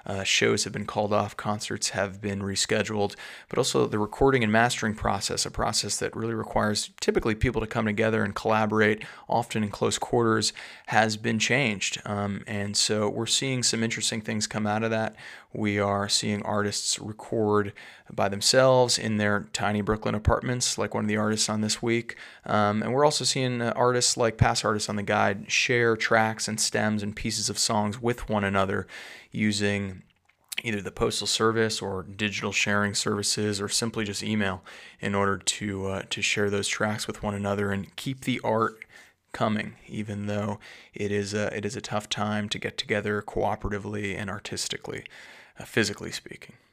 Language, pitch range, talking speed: English, 100-115 Hz, 180 wpm